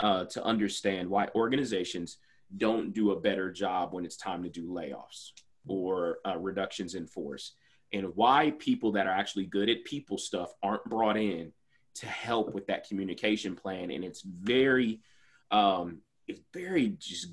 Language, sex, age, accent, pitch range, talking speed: English, male, 30-49, American, 95-115 Hz, 165 wpm